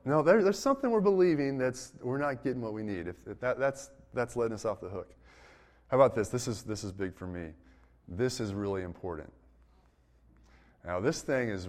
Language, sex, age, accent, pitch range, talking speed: English, male, 30-49, American, 90-130 Hz, 205 wpm